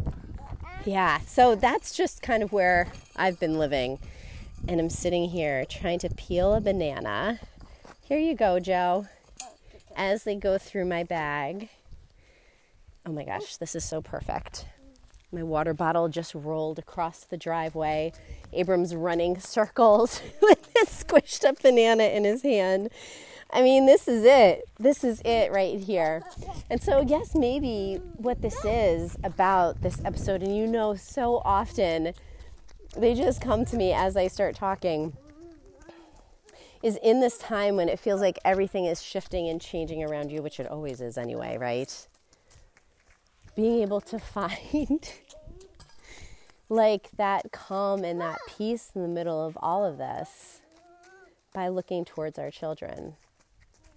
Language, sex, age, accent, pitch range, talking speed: English, female, 30-49, American, 165-230 Hz, 145 wpm